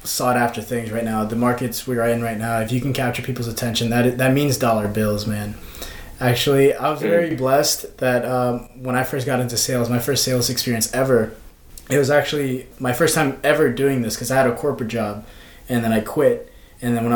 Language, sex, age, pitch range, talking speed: English, male, 20-39, 120-140 Hz, 220 wpm